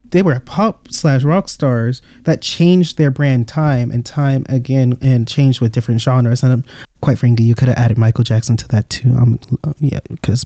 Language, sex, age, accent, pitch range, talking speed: English, male, 30-49, American, 120-150 Hz, 200 wpm